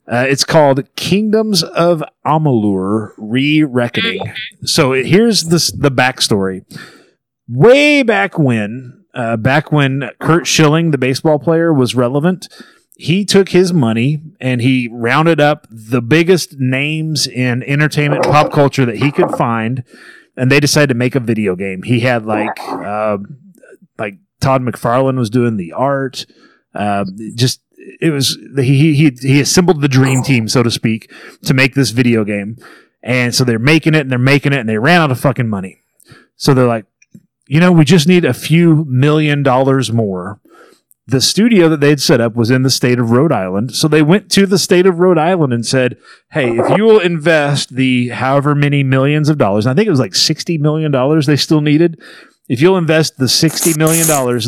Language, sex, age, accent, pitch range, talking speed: English, male, 30-49, American, 125-160 Hz, 180 wpm